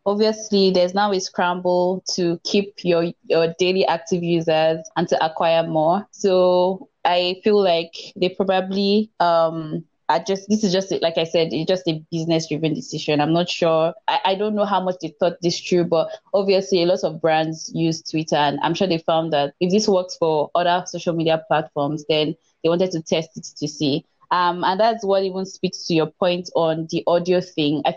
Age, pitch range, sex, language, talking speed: 20-39, 160-190 Hz, female, English, 200 wpm